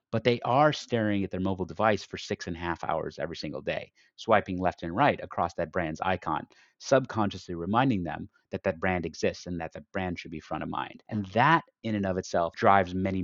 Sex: male